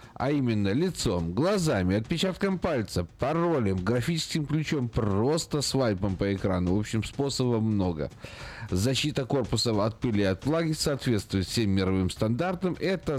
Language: Russian